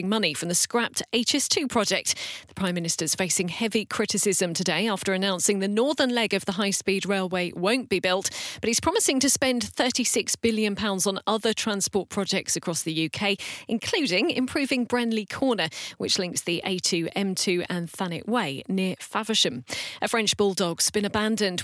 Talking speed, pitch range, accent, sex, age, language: 160 wpm, 185-240 Hz, British, female, 40-59, English